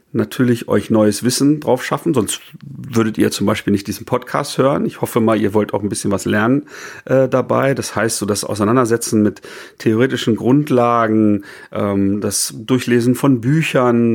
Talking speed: 170 wpm